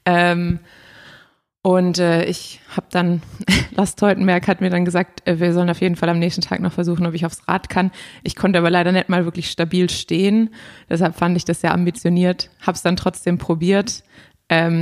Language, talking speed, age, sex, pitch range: German, 200 wpm, 20-39, female, 170-180 Hz